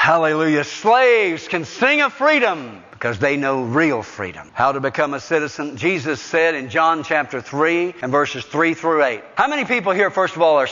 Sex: male